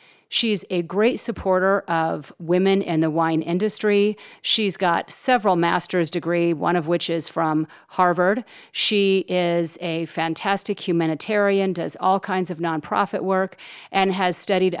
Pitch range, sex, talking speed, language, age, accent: 165-195 Hz, female, 140 wpm, English, 40-59, American